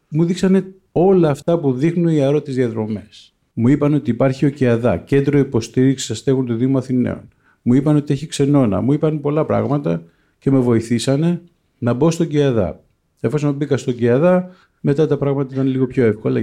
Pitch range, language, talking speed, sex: 125-155 Hz, English, 175 wpm, male